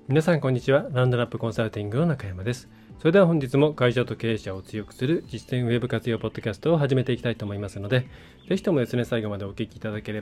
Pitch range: 110-135 Hz